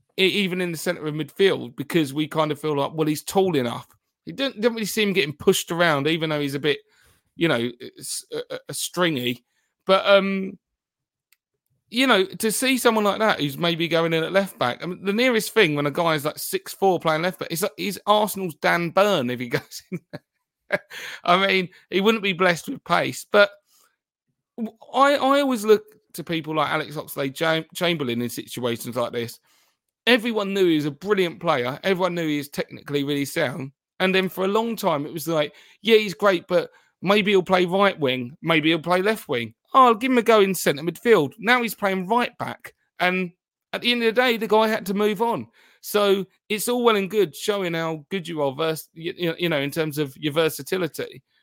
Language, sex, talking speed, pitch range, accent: English, male, 210 wpm, 155-210 Hz, British